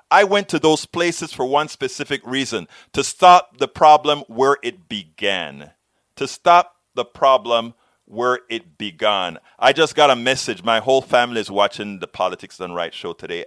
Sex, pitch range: male, 150-215 Hz